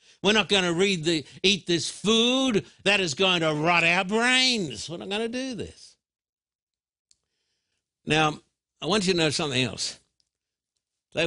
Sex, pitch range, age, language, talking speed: male, 150-195 Hz, 60-79, English, 155 wpm